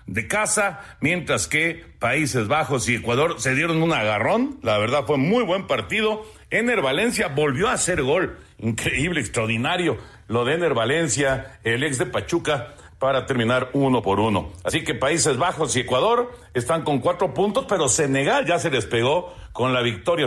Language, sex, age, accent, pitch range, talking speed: Spanish, male, 50-69, Mexican, 120-170 Hz, 170 wpm